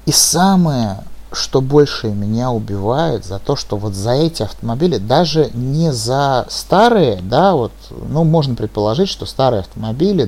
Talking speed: 145 wpm